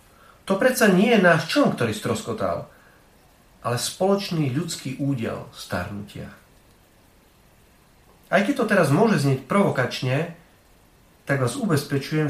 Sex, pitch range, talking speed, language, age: male, 115-175 Hz, 110 wpm, Slovak, 40-59